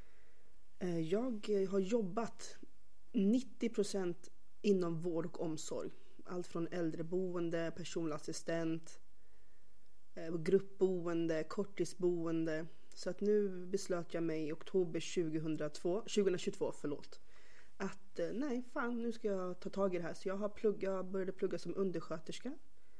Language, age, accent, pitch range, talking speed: Swedish, 30-49, native, 170-205 Hz, 110 wpm